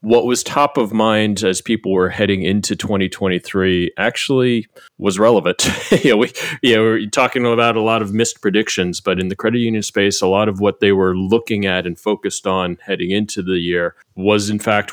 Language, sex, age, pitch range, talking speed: English, male, 30-49, 90-105 Hz, 210 wpm